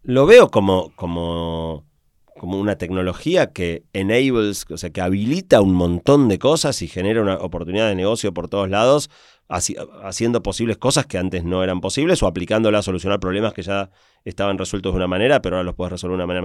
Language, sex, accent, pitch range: Spanish, male, Argentinian, 90-110 Hz